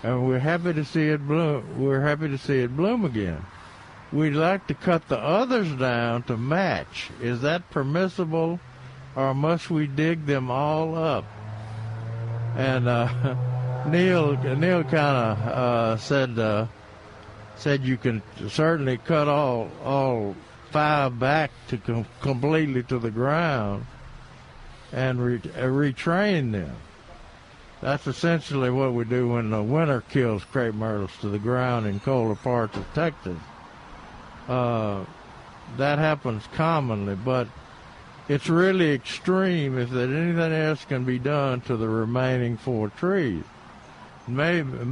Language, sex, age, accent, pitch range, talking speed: English, male, 60-79, American, 115-150 Hz, 135 wpm